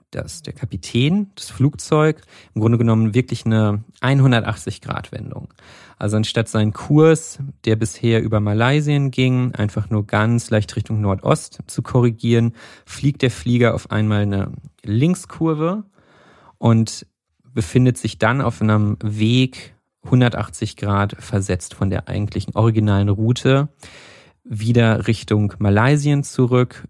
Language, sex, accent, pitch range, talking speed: German, male, German, 105-130 Hz, 120 wpm